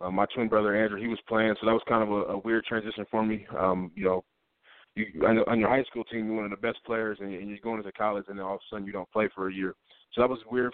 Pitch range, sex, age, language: 100-115 Hz, male, 20-39, English